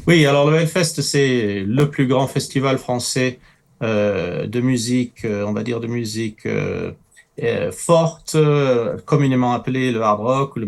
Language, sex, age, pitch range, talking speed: French, male, 40-59, 120-155 Hz, 165 wpm